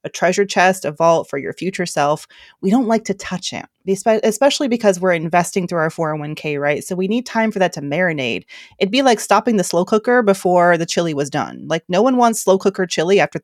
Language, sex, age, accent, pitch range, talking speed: English, female, 30-49, American, 160-205 Hz, 230 wpm